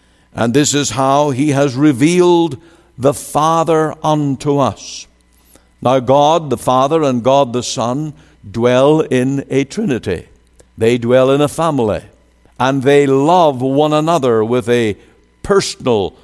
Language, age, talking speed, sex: English, 60-79, 135 wpm, male